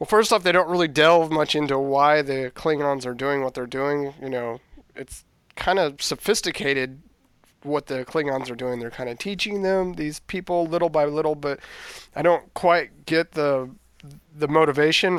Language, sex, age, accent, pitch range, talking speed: English, male, 30-49, American, 135-160 Hz, 180 wpm